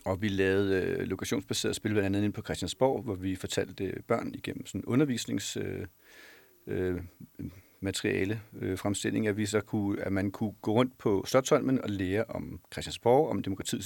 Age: 40-59